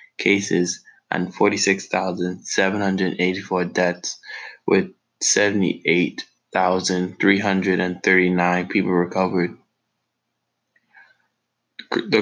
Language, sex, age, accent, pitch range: English, male, 20-39, American, 95-105 Hz